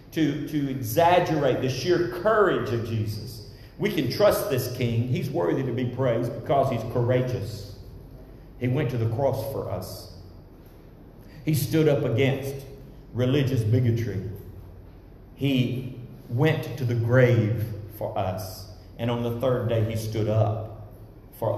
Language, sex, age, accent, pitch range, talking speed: English, male, 40-59, American, 105-145 Hz, 140 wpm